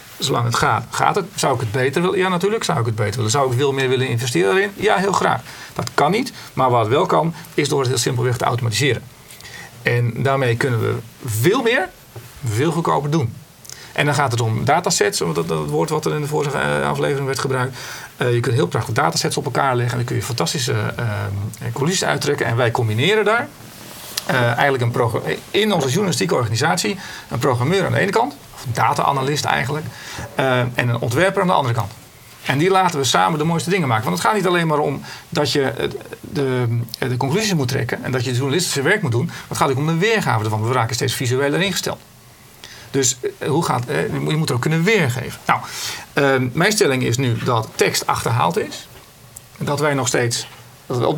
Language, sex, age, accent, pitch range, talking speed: Dutch, male, 40-59, Dutch, 120-155 Hz, 210 wpm